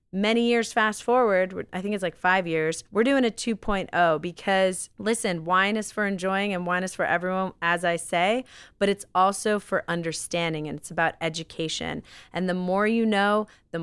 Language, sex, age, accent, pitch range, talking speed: English, female, 30-49, American, 165-210 Hz, 185 wpm